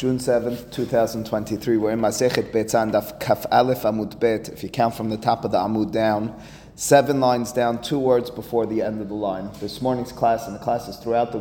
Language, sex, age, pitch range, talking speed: English, male, 30-49, 110-125 Hz, 215 wpm